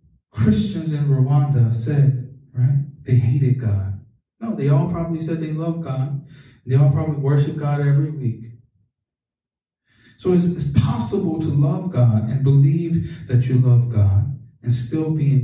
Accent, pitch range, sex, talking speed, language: American, 120-150 Hz, male, 150 wpm, English